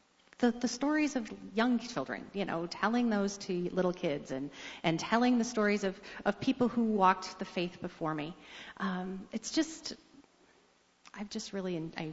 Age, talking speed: 40-59, 170 wpm